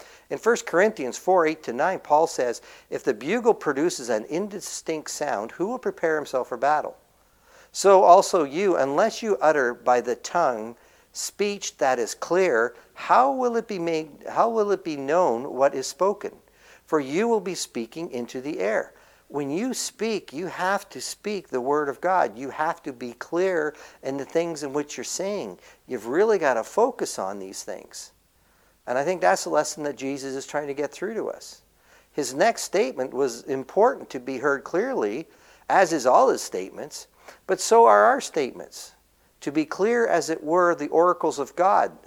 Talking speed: 185 wpm